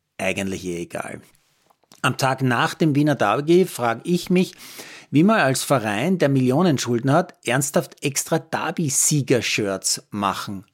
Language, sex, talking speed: German, male, 145 wpm